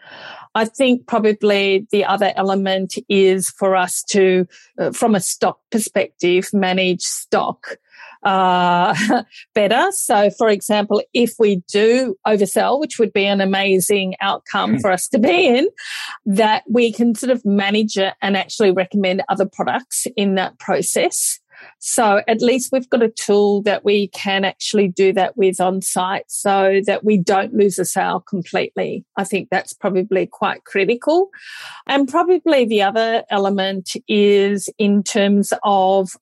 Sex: female